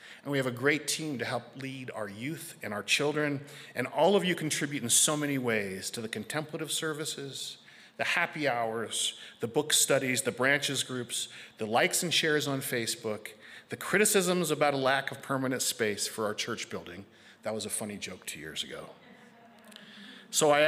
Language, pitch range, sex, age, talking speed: English, 120-155 Hz, male, 40-59, 185 wpm